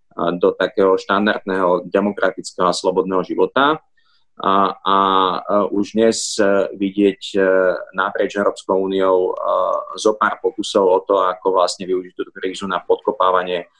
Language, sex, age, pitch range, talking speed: Slovak, male, 30-49, 95-120 Hz, 115 wpm